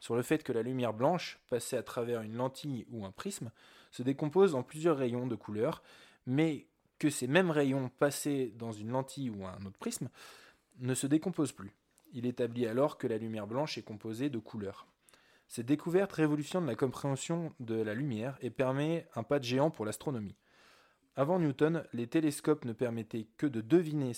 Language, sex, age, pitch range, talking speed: French, male, 20-39, 115-155 Hz, 185 wpm